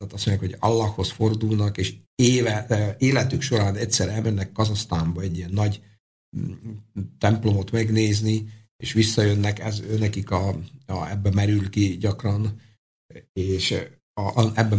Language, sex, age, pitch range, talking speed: Slovak, male, 50-69, 95-110 Hz, 110 wpm